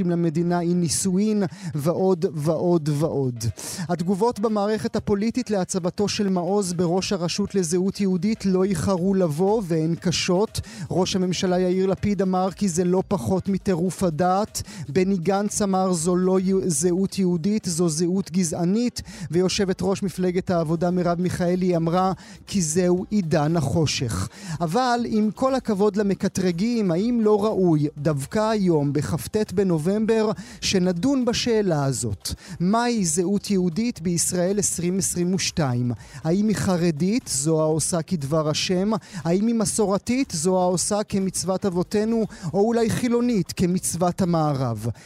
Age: 30-49